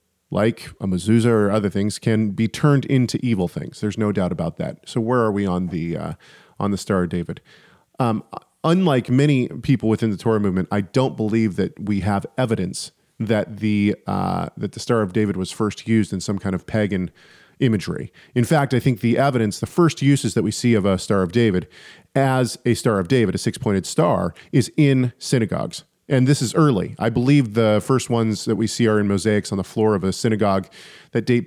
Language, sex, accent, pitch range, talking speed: English, male, American, 100-125 Hz, 215 wpm